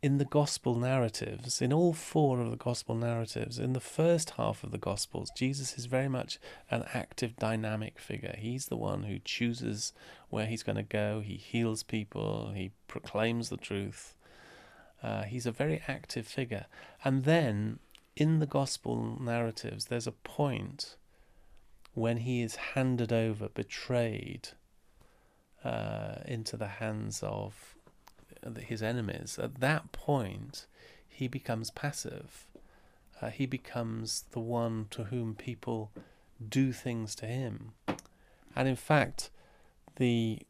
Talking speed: 140 wpm